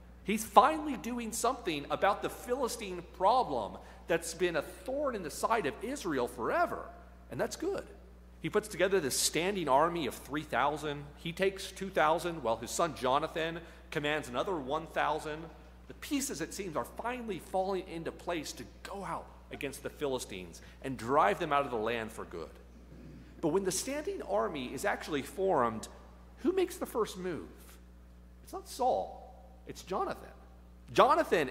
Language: English